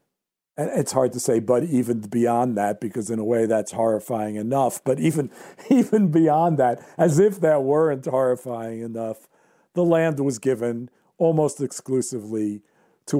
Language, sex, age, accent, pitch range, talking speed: English, male, 50-69, American, 115-140 Hz, 150 wpm